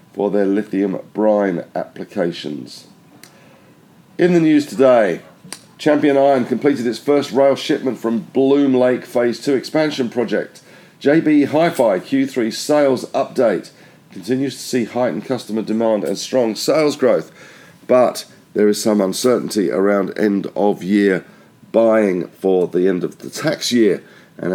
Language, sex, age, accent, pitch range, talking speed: English, male, 50-69, British, 105-135 Hz, 140 wpm